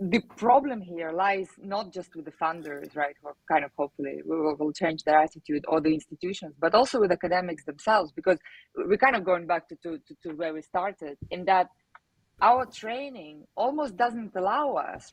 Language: English